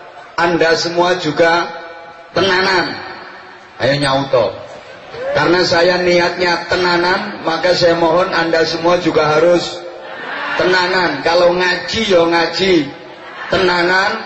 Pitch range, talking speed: 175-205 Hz, 95 wpm